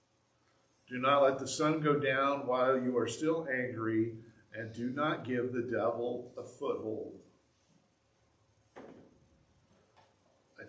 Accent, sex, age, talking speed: American, male, 50-69, 120 wpm